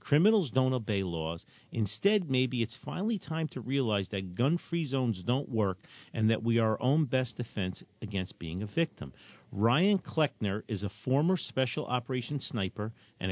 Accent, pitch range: American, 110-140 Hz